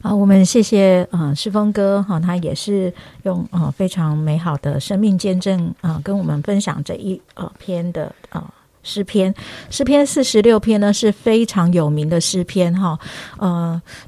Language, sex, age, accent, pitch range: Chinese, female, 50-69, American, 170-215 Hz